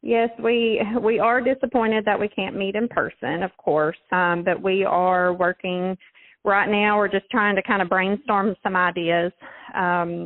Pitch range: 175-205 Hz